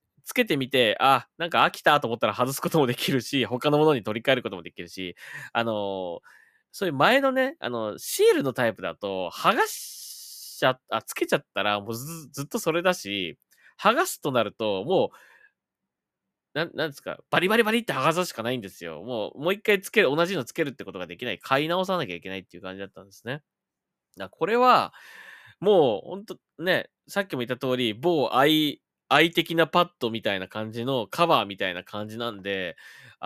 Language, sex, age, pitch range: Japanese, male, 20-39, 110-170 Hz